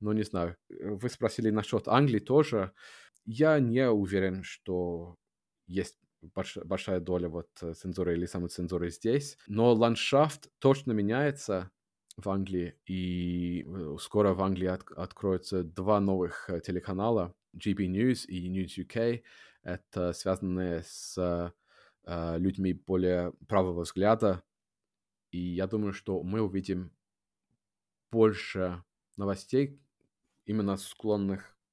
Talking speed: 115 wpm